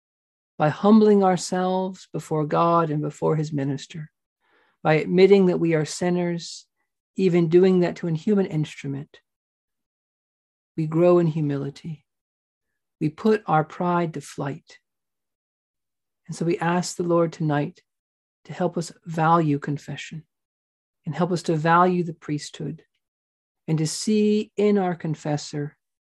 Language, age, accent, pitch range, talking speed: English, 50-69, American, 145-175 Hz, 130 wpm